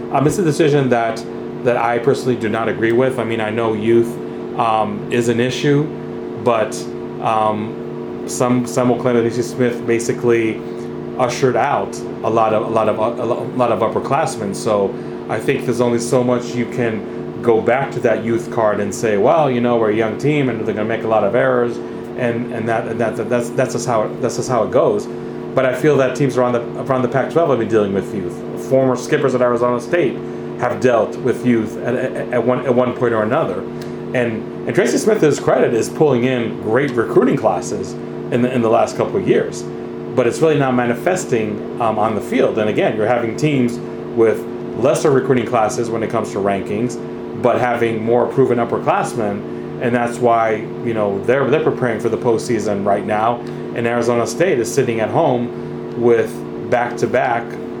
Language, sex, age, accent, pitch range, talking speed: English, male, 30-49, American, 115-125 Hz, 200 wpm